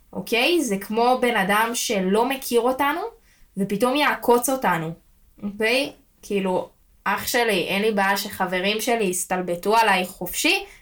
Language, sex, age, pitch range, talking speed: Hebrew, female, 20-39, 195-245 Hz, 130 wpm